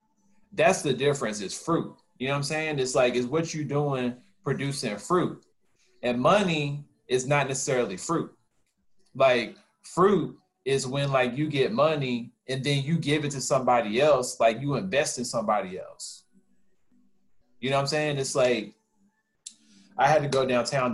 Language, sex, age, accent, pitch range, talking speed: English, male, 20-39, American, 110-150 Hz, 165 wpm